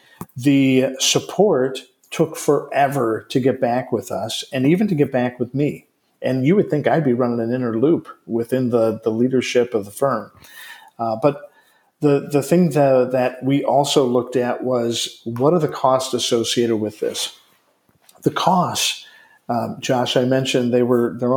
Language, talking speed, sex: English, 170 wpm, male